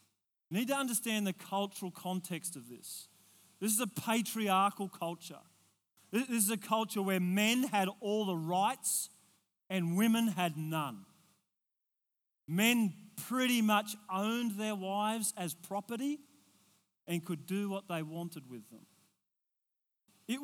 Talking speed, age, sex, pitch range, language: 130 wpm, 40-59, male, 180-235 Hz, English